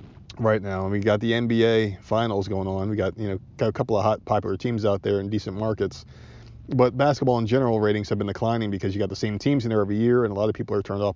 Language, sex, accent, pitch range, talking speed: English, male, American, 100-115 Hz, 275 wpm